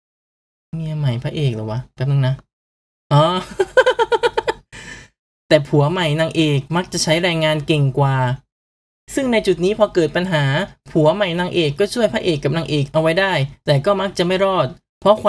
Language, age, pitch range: Thai, 20-39, 150-195 Hz